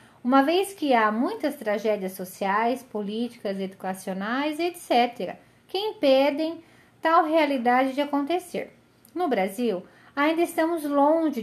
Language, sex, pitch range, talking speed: Portuguese, female, 210-290 Hz, 110 wpm